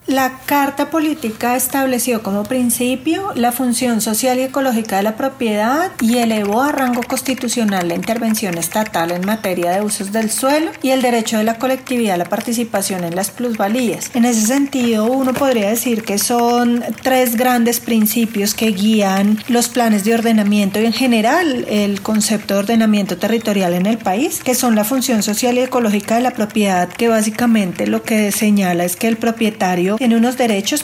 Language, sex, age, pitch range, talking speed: Spanish, female, 40-59, 205-250 Hz, 175 wpm